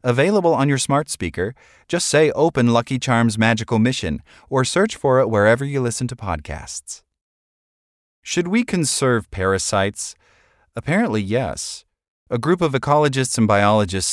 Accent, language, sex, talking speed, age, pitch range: American, English, male, 140 wpm, 30-49, 95-130 Hz